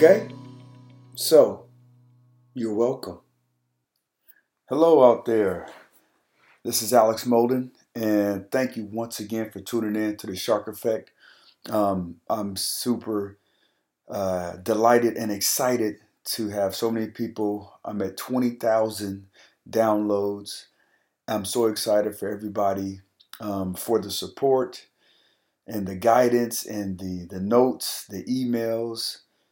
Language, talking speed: English, 115 wpm